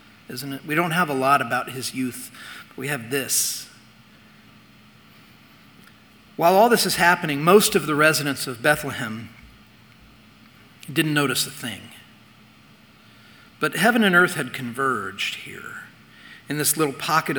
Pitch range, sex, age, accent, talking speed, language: 135-160 Hz, male, 40-59, American, 140 wpm, English